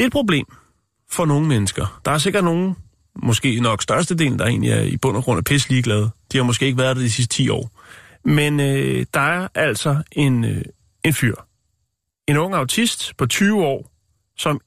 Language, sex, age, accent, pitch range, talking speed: Danish, male, 30-49, native, 115-145 Hz, 195 wpm